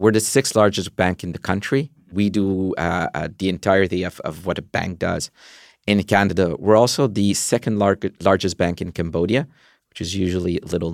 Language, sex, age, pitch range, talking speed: English, male, 50-69, 90-110 Hz, 190 wpm